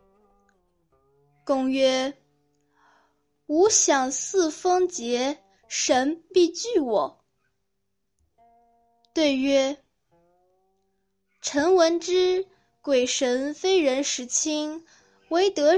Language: Chinese